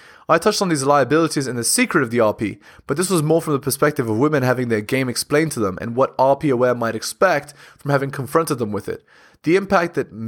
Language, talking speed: English, 240 wpm